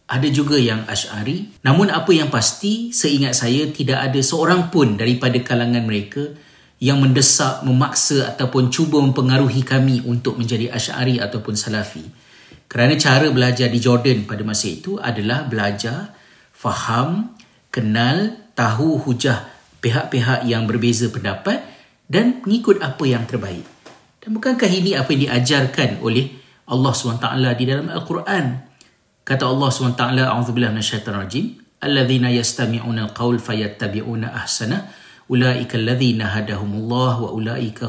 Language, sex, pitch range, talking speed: Malay, male, 120-140 Hz, 125 wpm